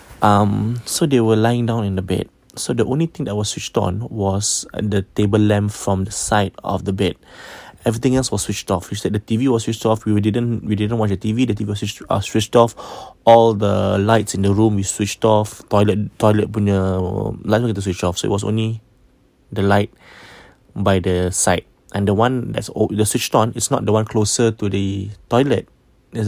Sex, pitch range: male, 100-115 Hz